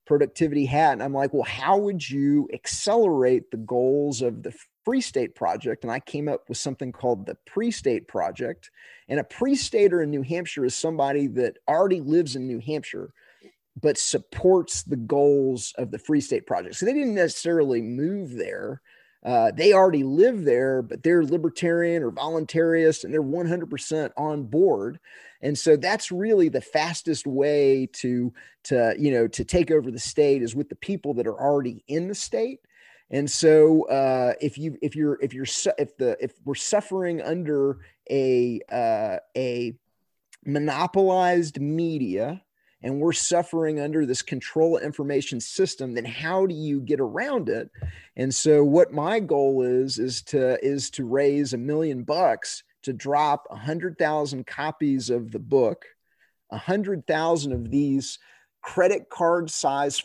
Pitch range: 130-170 Hz